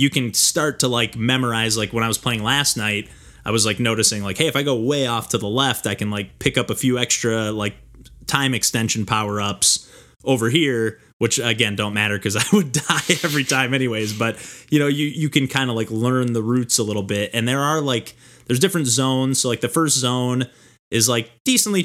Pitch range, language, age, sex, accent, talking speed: 110-130 Hz, English, 20-39, male, American, 230 wpm